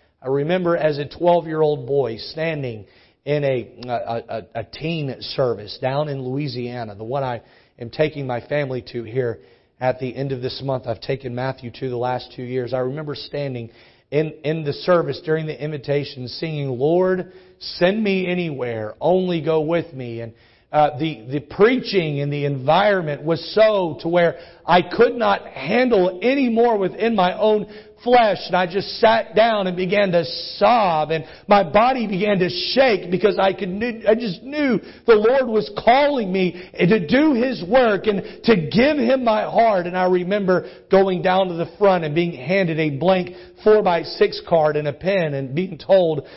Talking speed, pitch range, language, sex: 180 wpm, 140-195 Hz, English, male